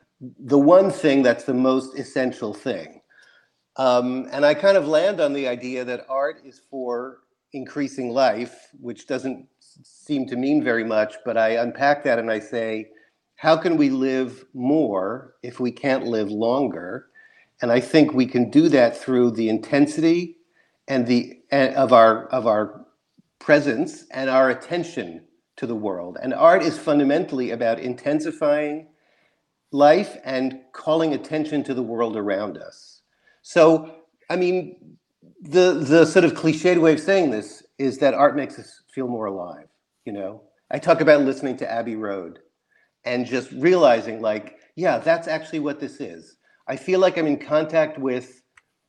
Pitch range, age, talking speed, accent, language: 125-155 Hz, 50-69, 160 wpm, American, English